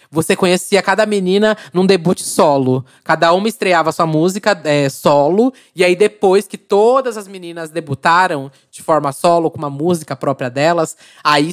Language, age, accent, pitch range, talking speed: Portuguese, 20-39, Brazilian, 145-180 Hz, 160 wpm